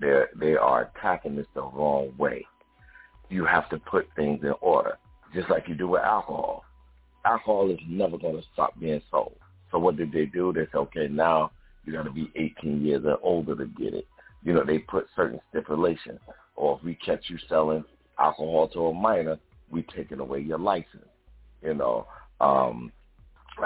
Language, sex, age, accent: English, male, 50-69, American